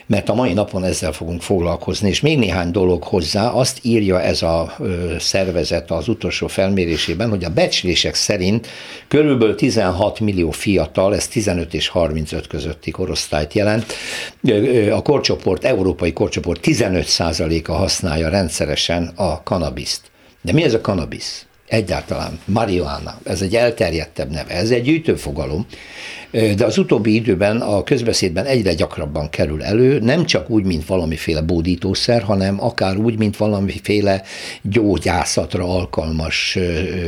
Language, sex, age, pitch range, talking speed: Hungarian, male, 60-79, 85-105 Hz, 135 wpm